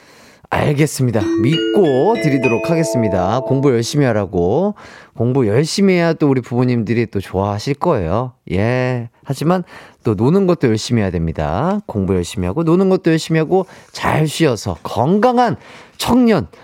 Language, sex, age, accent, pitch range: Korean, male, 30-49, native, 115-190 Hz